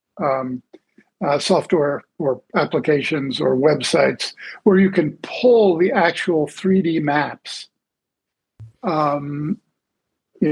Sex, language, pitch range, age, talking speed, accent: male, English, 155-200 Hz, 50-69, 95 wpm, American